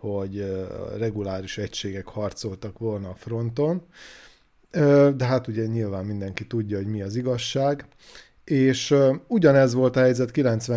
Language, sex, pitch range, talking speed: Hungarian, male, 105-125 Hz, 125 wpm